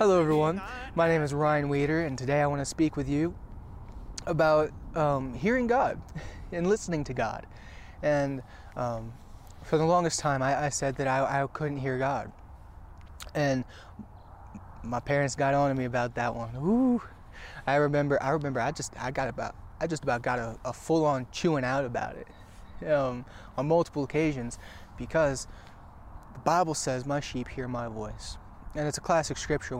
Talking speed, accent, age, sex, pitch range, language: 175 wpm, American, 20-39, male, 105-145 Hz, English